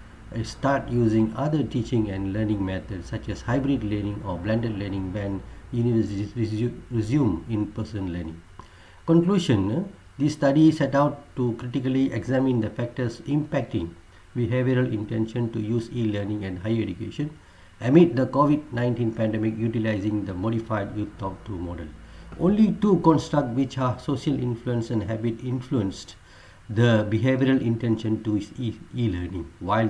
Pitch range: 100-135 Hz